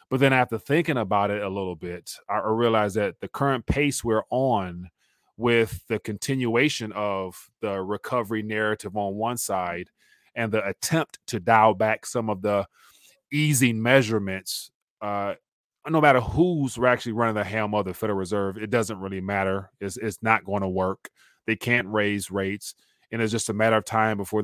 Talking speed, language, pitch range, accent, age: 175 wpm, English, 100-120 Hz, American, 30-49